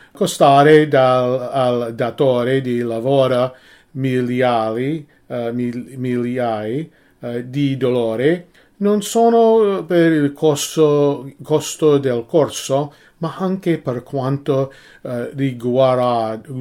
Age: 40-59